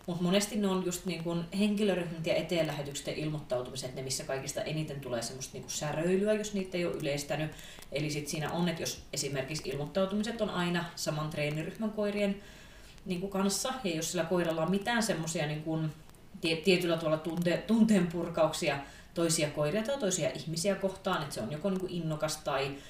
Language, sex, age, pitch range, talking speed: Finnish, female, 30-49, 150-185 Hz, 150 wpm